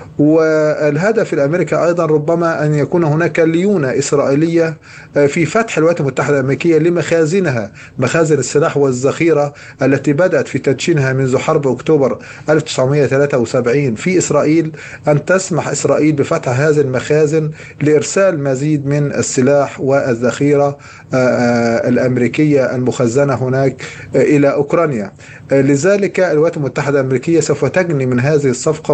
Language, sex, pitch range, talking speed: Arabic, male, 135-155 Hz, 110 wpm